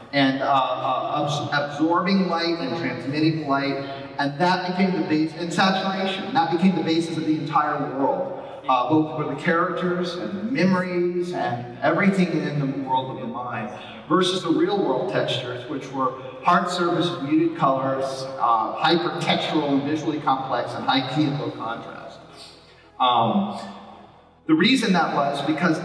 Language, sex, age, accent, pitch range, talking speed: Italian, male, 40-59, American, 135-175 Hz, 160 wpm